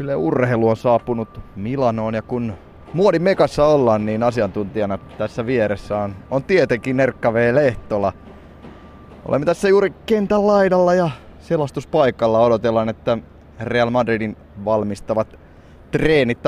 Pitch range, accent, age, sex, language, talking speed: 100-130 Hz, native, 20-39, male, Finnish, 115 wpm